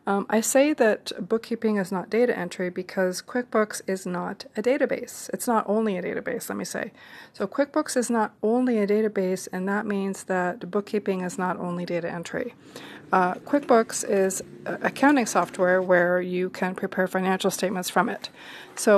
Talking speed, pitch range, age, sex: 175 wpm, 190-230 Hz, 40-59, female